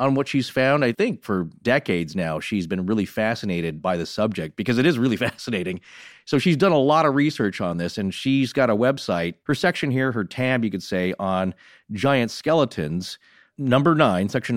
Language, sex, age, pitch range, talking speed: English, male, 40-59, 100-145 Hz, 200 wpm